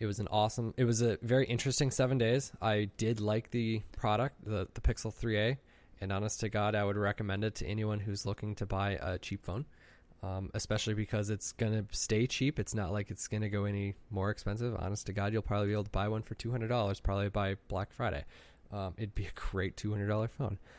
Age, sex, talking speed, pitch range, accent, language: 20-39, male, 240 wpm, 95-115 Hz, American, English